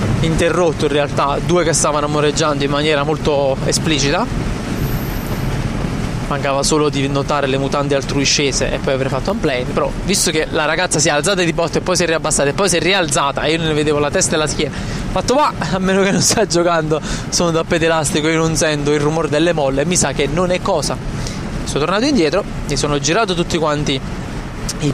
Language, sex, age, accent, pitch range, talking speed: Italian, male, 20-39, native, 140-165 Hz, 210 wpm